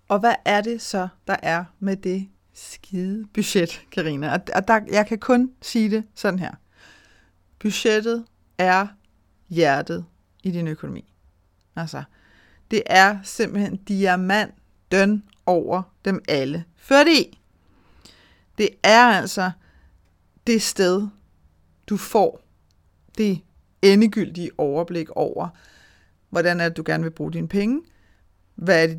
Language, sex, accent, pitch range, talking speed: Danish, female, native, 170-220 Hz, 120 wpm